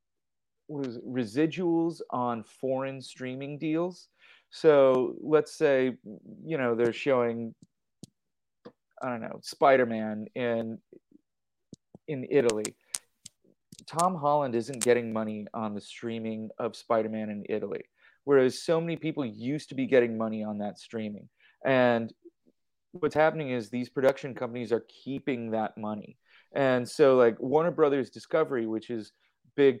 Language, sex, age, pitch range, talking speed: English, male, 30-49, 115-160 Hz, 130 wpm